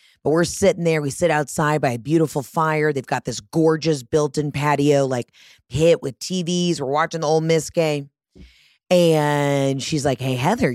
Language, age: English, 30-49